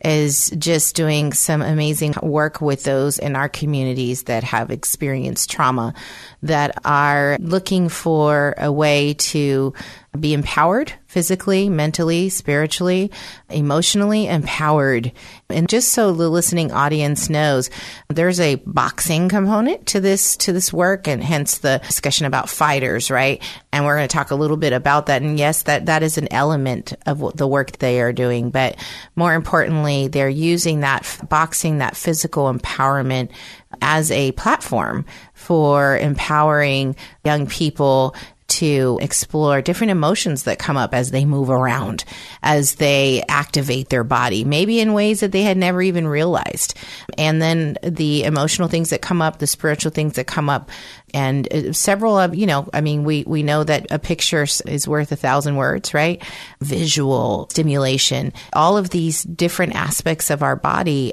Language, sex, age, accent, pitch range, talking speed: English, female, 30-49, American, 135-165 Hz, 160 wpm